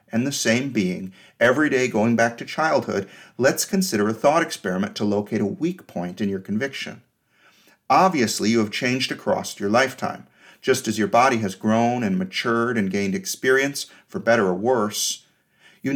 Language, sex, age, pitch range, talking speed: English, male, 40-59, 110-160 Hz, 175 wpm